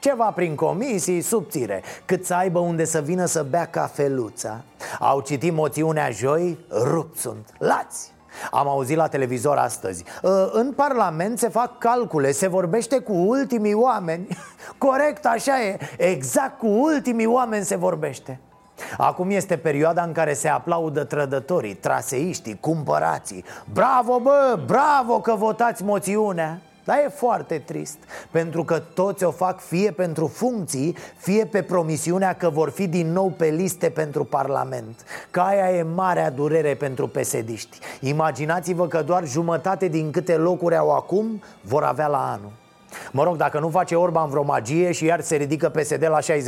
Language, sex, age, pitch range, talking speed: Romanian, male, 30-49, 155-215 Hz, 150 wpm